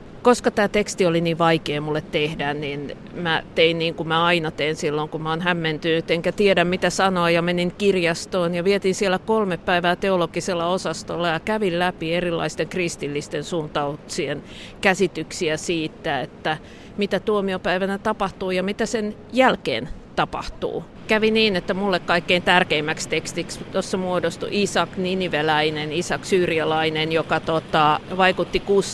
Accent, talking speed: native, 140 wpm